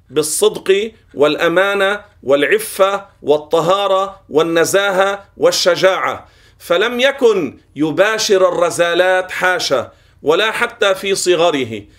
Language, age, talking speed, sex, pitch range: Arabic, 40-59, 75 wpm, male, 175-215 Hz